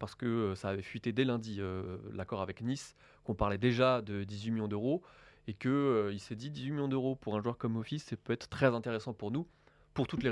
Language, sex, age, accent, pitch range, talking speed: French, male, 20-39, French, 100-130 Hz, 240 wpm